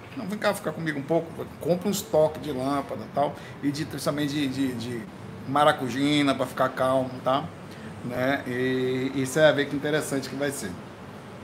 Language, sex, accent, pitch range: Portuguese, male, Brazilian, 135-165 Hz